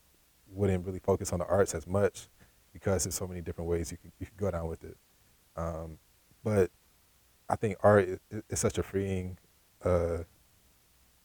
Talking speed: 180 wpm